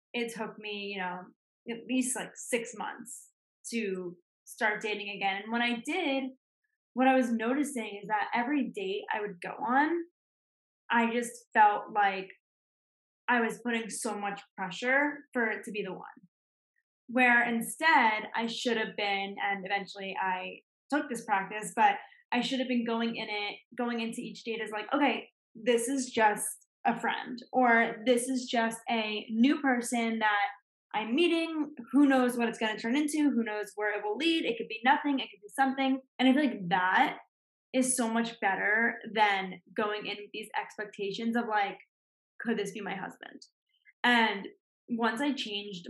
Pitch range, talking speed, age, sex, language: 210-255 Hz, 175 wpm, 10-29, female, English